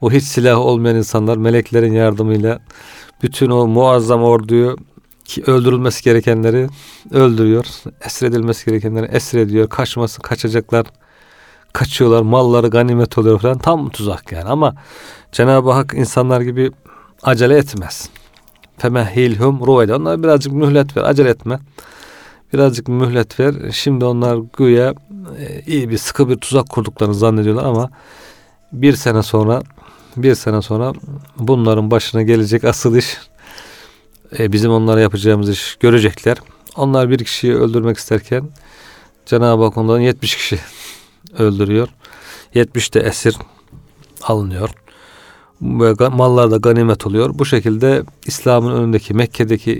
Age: 40-59